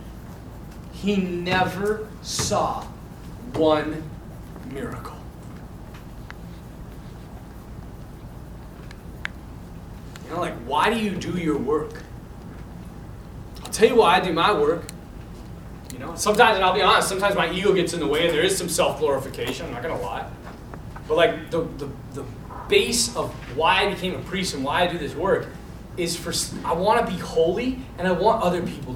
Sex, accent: male, American